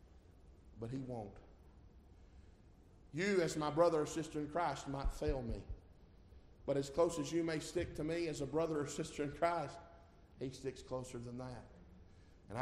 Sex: male